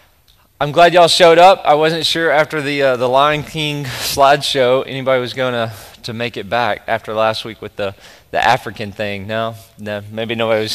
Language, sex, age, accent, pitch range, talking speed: English, male, 20-39, American, 115-150 Hz, 200 wpm